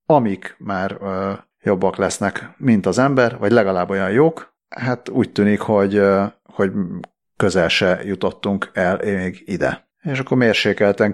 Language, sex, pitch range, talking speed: Hungarian, male, 95-110 Hz, 135 wpm